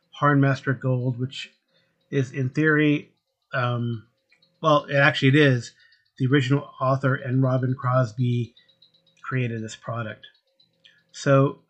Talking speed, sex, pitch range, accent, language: 110 wpm, male, 130-155 Hz, American, English